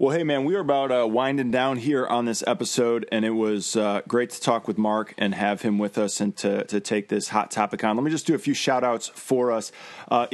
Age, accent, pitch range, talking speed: 20-39, American, 110-135 Hz, 265 wpm